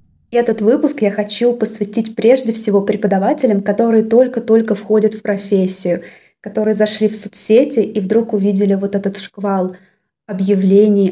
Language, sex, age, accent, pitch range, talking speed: Russian, female, 20-39, native, 195-225 Hz, 130 wpm